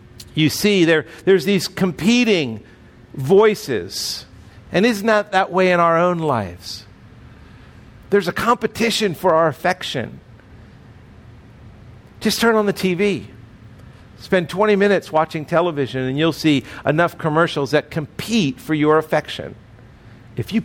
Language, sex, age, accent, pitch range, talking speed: English, male, 50-69, American, 115-170 Hz, 130 wpm